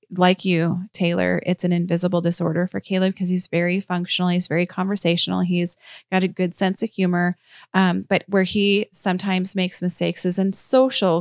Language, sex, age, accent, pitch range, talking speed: English, female, 30-49, American, 175-195 Hz, 175 wpm